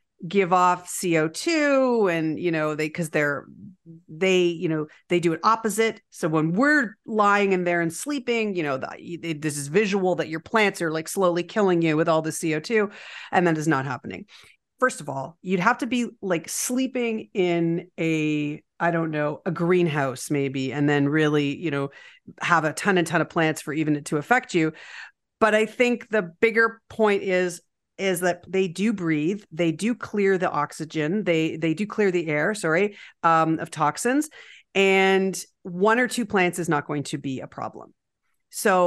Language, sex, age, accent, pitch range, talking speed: English, female, 40-59, American, 160-215 Hz, 190 wpm